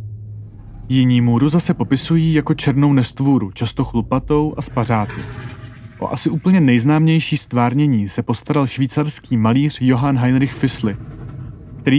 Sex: male